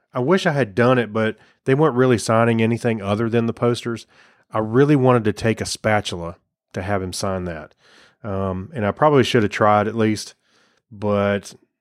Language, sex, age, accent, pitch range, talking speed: English, male, 30-49, American, 100-120 Hz, 195 wpm